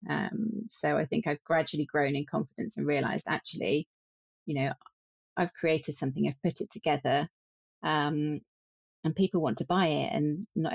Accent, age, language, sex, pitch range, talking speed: British, 30-49, English, female, 140-165 Hz, 165 wpm